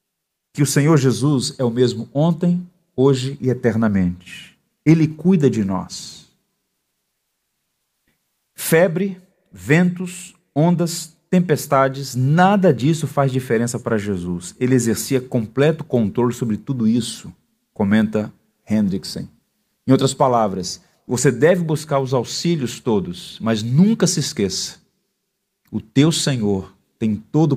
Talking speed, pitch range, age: 115 wpm, 115-165 Hz, 40-59